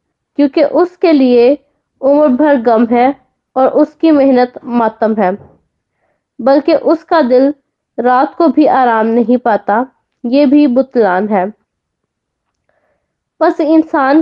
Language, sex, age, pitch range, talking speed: Hindi, female, 20-39, 235-290 Hz, 105 wpm